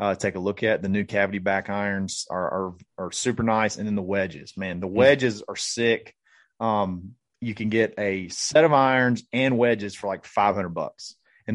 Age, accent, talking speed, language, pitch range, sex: 30-49, American, 205 wpm, English, 100-120 Hz, male